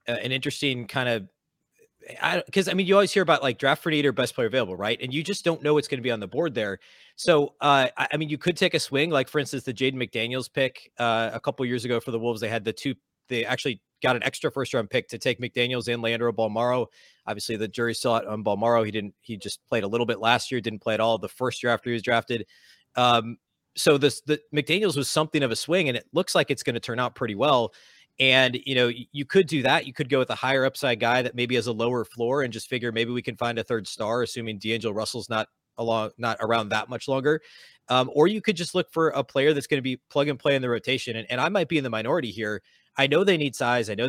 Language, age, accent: English, 30-49, American